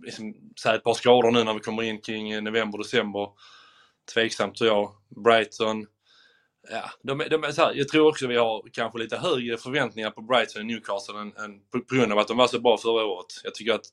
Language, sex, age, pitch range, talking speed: Swedish, male, 20-39, 115-155 Hz, 220 wpm